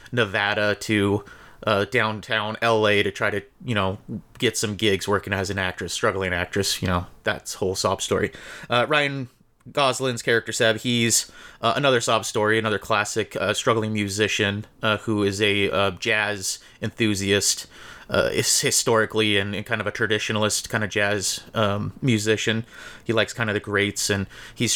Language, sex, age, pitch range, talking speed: English, male, 30-49, 100-115 Hz, 165 wpm